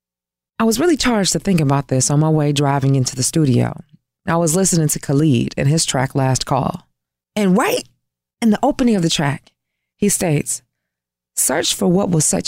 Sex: female